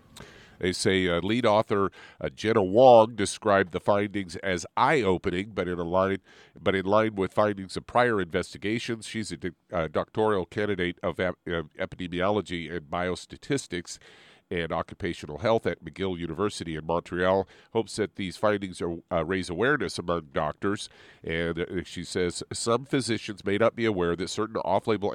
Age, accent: 50-69, American